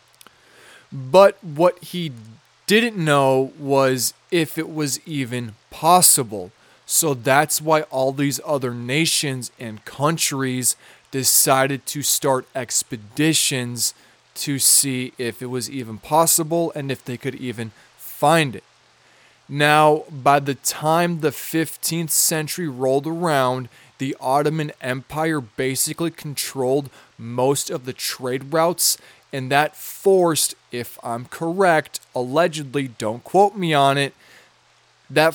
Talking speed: 120 wpm